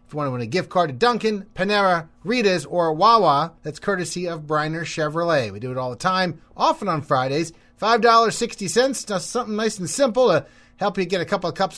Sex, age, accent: male, 30-49, American